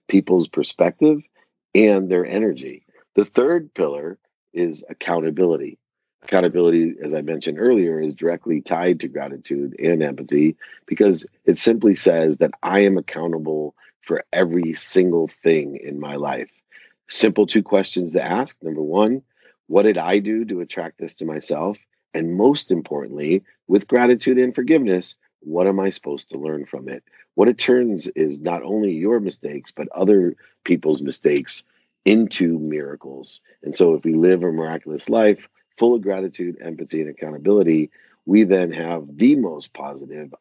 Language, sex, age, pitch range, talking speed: English, male, 40-59, 80-105 Hz, 150 wpm